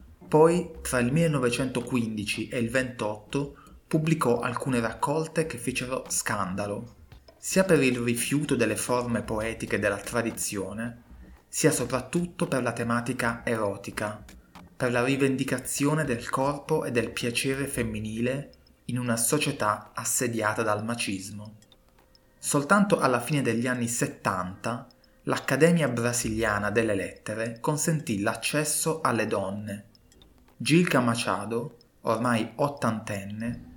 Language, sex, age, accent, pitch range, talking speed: Italian, male, 30-49, native, 105-135 Hz, 110 wpm